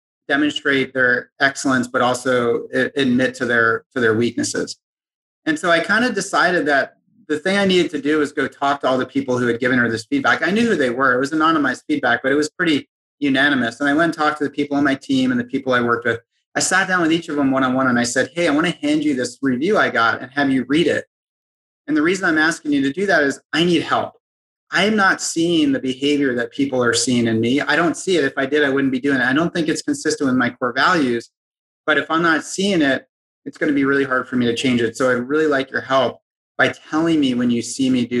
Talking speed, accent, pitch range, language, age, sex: 270 wpm, American, 125-155 Hz, English, 30-49, male